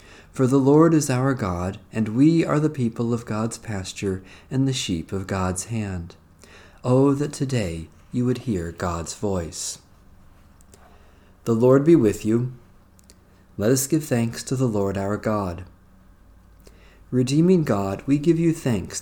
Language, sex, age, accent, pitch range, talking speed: English, male, 50-69, American, 95-130 Hz, 150 wpm